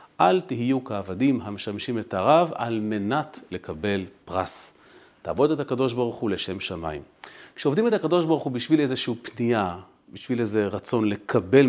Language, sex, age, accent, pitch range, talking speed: Hebrew, male, 40-59, native, 110-145 Hz, 150 wpm